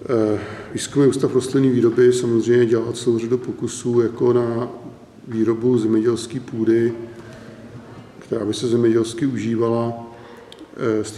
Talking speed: 115 wpm